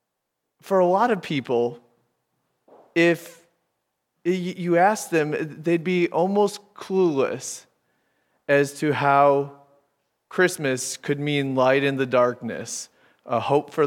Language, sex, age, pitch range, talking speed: English, male, 30-49, 130-170 Hz, 110 wpm